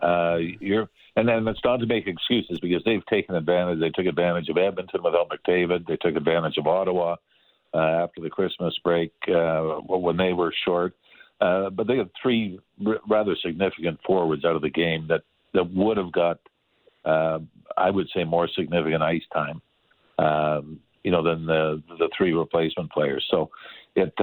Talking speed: 180 wpm